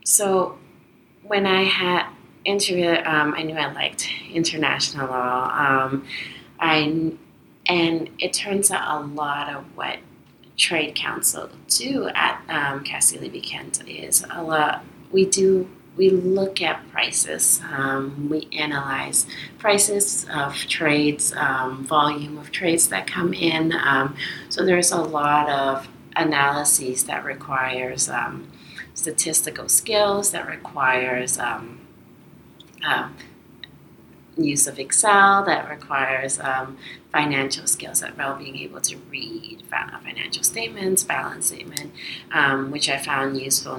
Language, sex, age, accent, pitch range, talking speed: English, female, 30-49, American, 135-175 Hz, 120 wpm